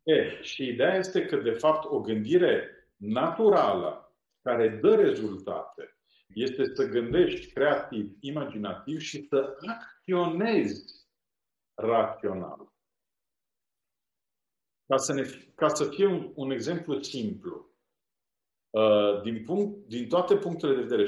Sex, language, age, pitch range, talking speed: male, Romanian, 50-69, 130-205 Hz, 110 wpm